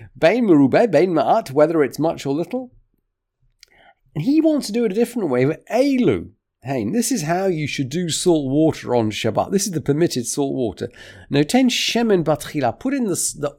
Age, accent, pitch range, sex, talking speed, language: 40-59, British, 135-195 Hz, male, 200 wpm, English